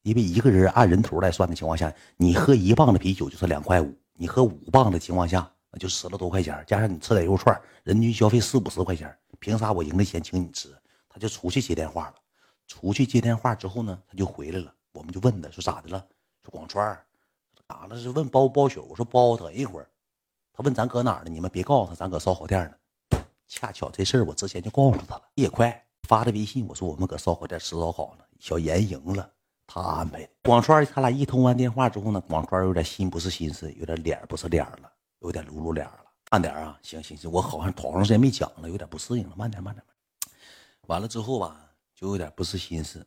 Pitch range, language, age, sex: 85-115 Hz, Chinese, 50-69, male